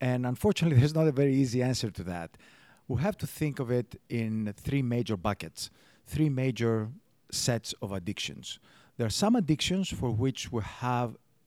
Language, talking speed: English, 175 wpm